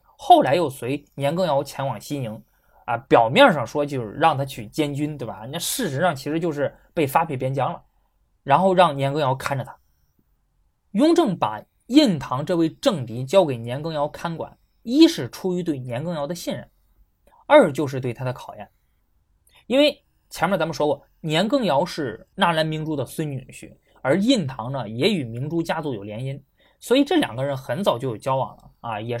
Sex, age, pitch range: male, 20-39, 130-190 Hz